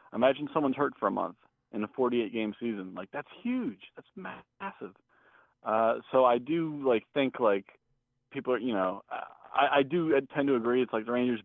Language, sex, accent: English, male, American